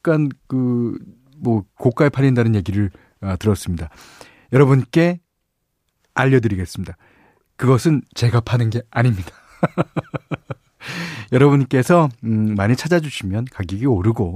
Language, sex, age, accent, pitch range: Korean, male, 40-59, native, 110-155 Hz